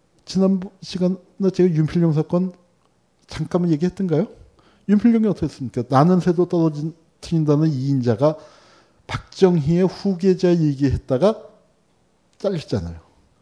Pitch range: 125-180 Hz